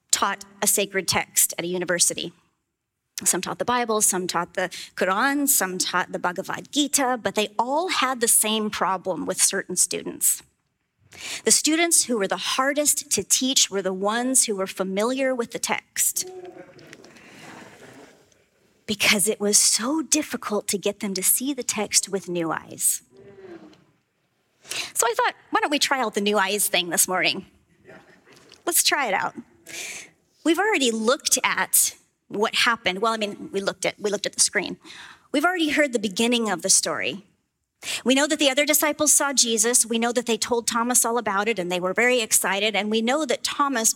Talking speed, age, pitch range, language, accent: 180 wpm, 30-49, 190-260 Hz, English, American